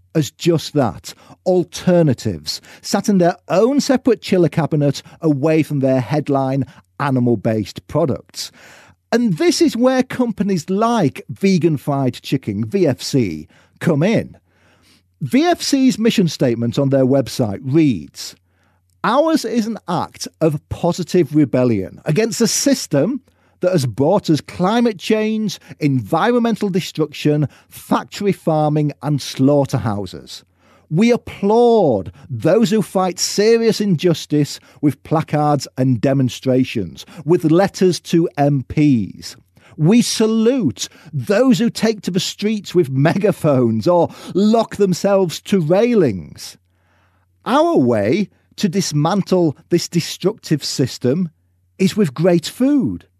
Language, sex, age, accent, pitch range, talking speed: English, male, 50-69, British, 130-205 Hz, 110 wpm